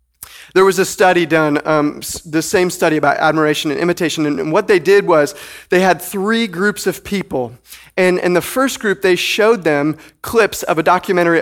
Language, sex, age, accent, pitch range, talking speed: English, male, 30-49, American, 160-205 Hz, 195 wpm